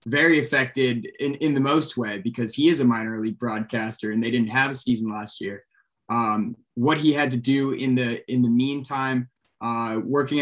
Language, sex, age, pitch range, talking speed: English, male, 20-39, 120-140 Hz, 200 wpm